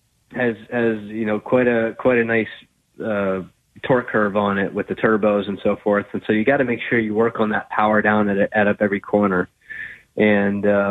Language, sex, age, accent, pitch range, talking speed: English, male, 20-39, American, 105-120 Hz, 220 wpm